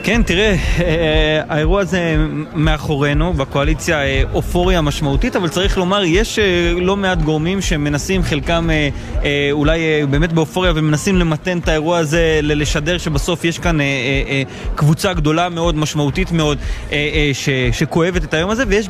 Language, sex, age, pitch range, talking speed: Hebrew, male, 20-39, 150-180 Hz, 130 wpm